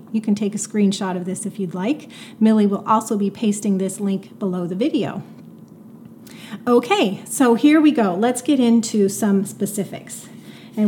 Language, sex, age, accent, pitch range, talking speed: English, female, 30-49, American, 195-235 Hz, 170 wpm